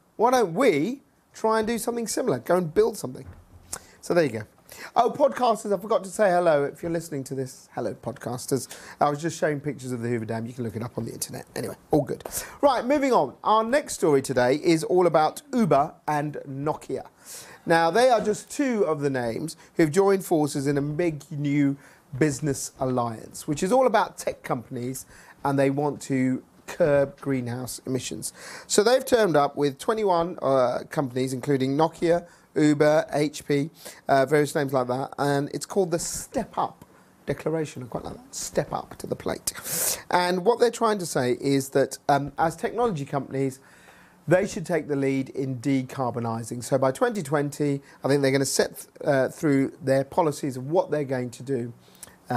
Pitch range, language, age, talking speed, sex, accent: 135-180 Hz, English, 40-59, 190 wpm, male, British